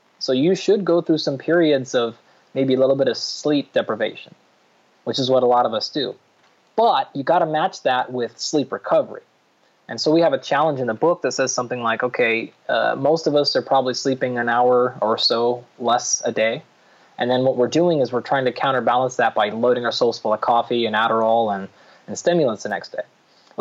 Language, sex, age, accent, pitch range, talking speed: English, male, 20-39, American, 120-150 Hz, 220 wpm